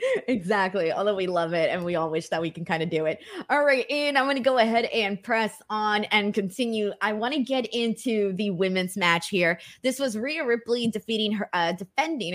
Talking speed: 225 wpm